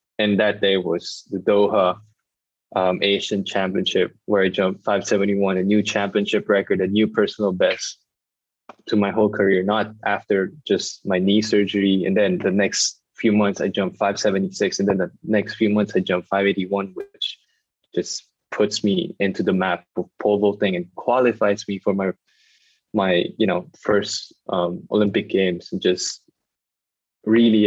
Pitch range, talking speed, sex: 95-105 Hz, 160 wpm, male